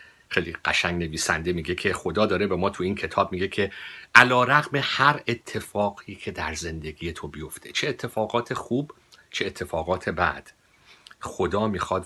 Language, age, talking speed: Persian, 50-69, 155 wpm